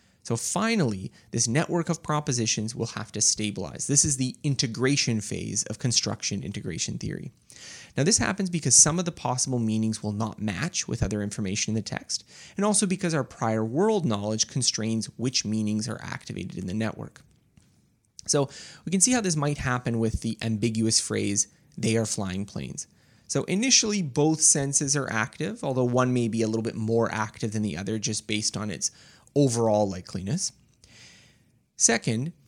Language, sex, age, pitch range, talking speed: English, male, 20-39, 110-145 Hz, 170 wpm